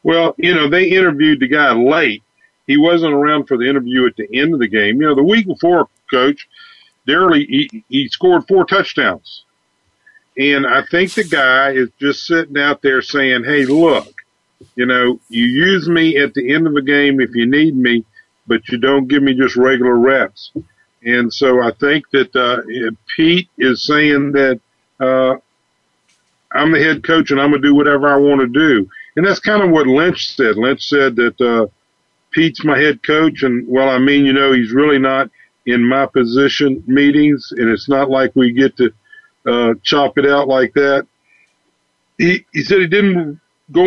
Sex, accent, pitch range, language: male, American, 130-165 Hz, English